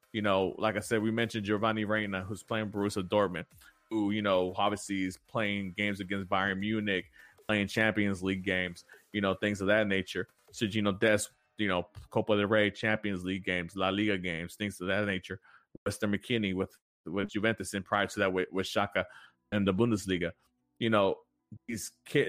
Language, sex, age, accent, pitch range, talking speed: English, male, 20-39, American, 95-110 Hz, 190 wpm